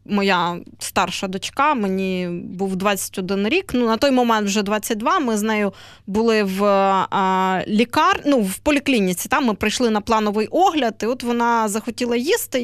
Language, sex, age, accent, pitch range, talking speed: Ukrainian, female, 20-39, native, 205-260 Hz, 155 wpm